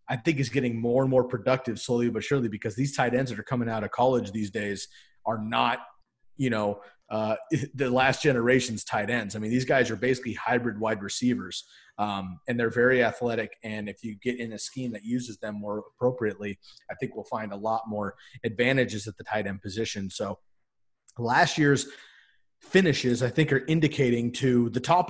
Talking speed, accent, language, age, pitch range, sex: 200 wpm, American, English, 30-49, 110-130 Hz, male